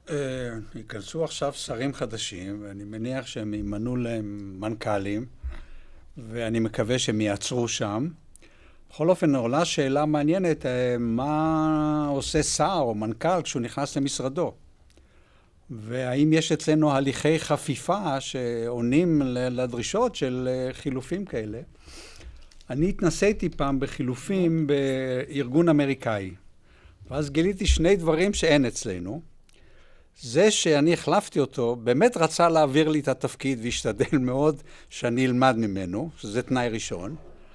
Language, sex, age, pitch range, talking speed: Hebrew, male, 60-79, 120-155 Hz, 110 wpm